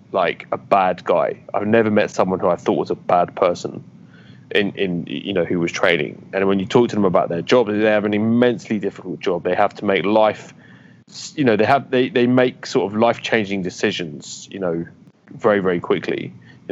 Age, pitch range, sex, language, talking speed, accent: 20-39, 100-125 Hz, male, English, 210 wpm, British